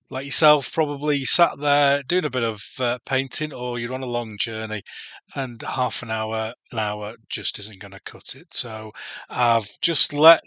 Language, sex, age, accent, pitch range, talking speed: English, male, 30-49, British, 115-145 Hz, 190 wpm